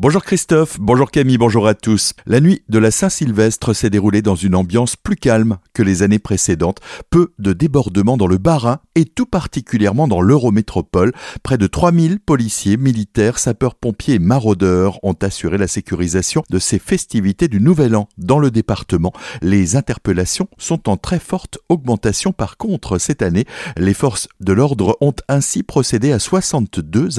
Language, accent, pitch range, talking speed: French, French, 100-140 Hz, 165 wpm